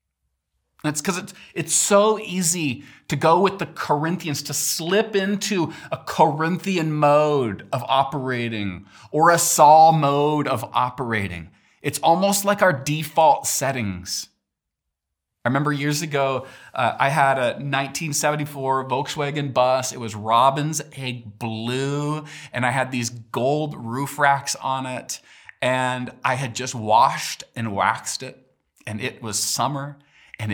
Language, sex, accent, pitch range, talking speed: English, male, American, 110-145 Hz, 135 wpm